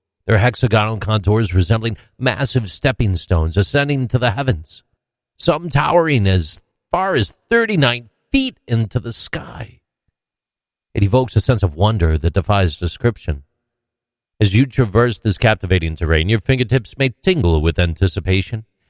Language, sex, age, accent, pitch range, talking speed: English, male, 50-69, American, 85-125 Hz, 135 wpm